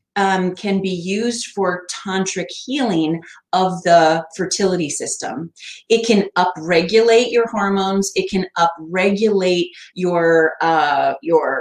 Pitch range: 170-215 Hz